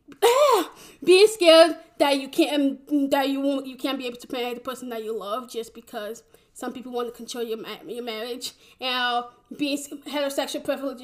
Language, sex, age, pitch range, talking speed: English, female, 10-29, 230-265 Hz, 180 wpm